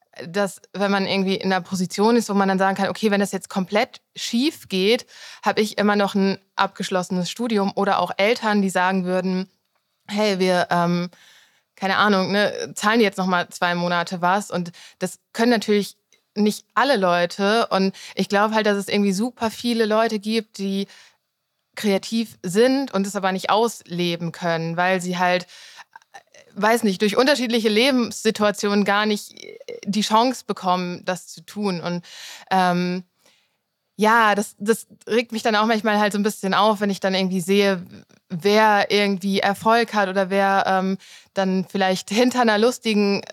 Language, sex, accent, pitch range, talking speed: German, female, German, 190-215 Hz, 170 wpm